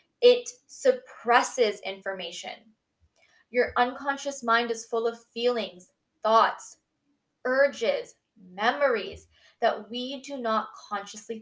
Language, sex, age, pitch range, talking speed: English, female, 10-29, 200-255 Hz, 95 wpm